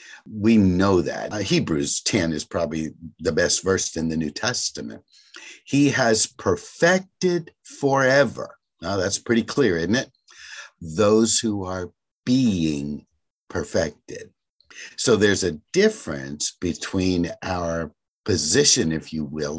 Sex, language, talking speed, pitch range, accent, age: male, English, 125 wpm, 80-115 Hz, American, 50-69